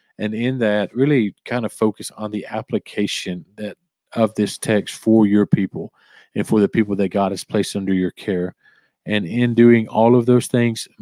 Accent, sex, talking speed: American, male, 190 wpm